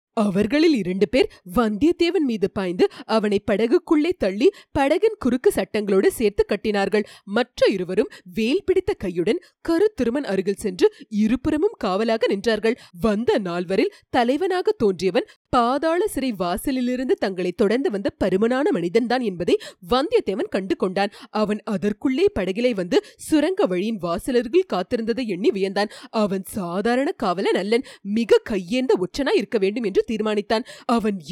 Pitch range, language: 210-310 Hz, Tamil